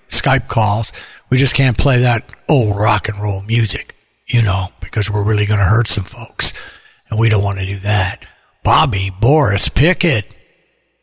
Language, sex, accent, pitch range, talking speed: English, male, American, 105-130 Hz, 175 wpm